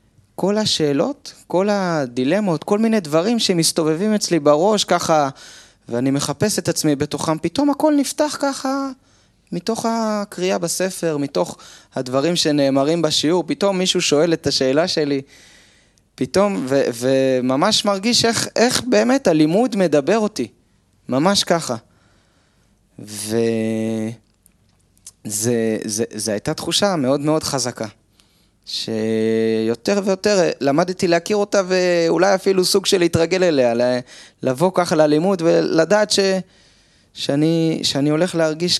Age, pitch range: 20-39, 110-180 Hz